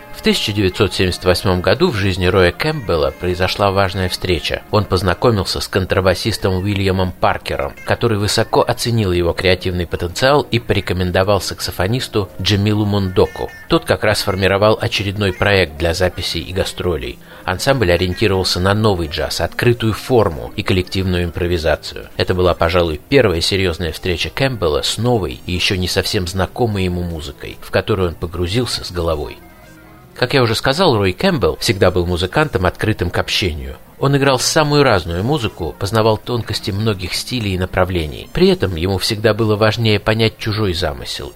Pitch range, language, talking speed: 90-110 Hz, Russian, 145 wpm